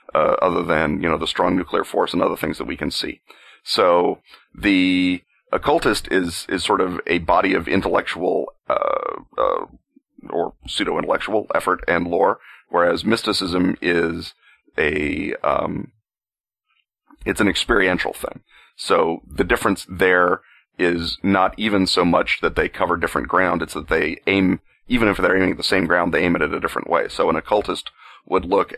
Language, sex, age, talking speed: English, male, 40-59, 170 wpm